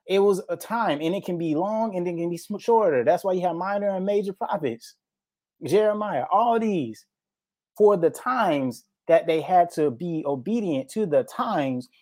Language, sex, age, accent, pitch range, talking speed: English, male, 30-49, American, 155-205 Hz, 185 wpm